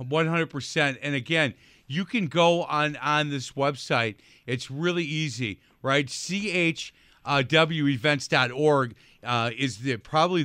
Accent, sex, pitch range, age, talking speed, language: American, male, 130-160 Hz, 50-69, 110 wpm, English